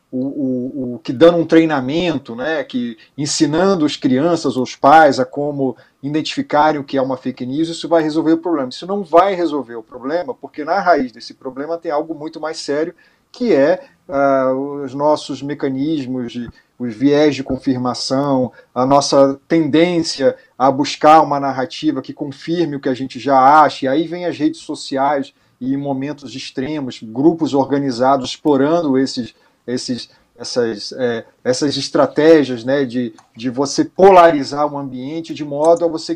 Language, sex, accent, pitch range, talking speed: Portuguese, male, Brazilian, 135-170 Hz, 165 wpm